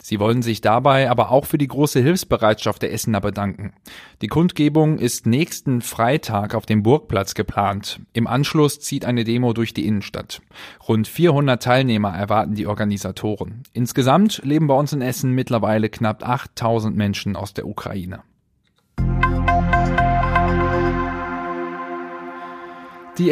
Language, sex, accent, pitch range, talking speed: German, male, German, 110-135 Hz, 130 wpm